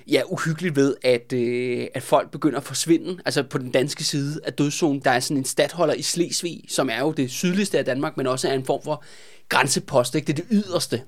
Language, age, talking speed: Danish, 20-39, 230 wpm